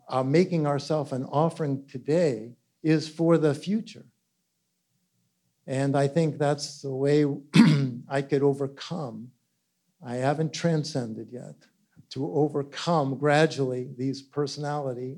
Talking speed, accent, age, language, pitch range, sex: 110 wpm, American, 50-69, English, 125-145 Hz, male